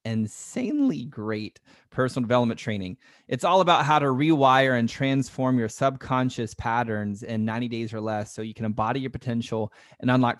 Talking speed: 165 wpm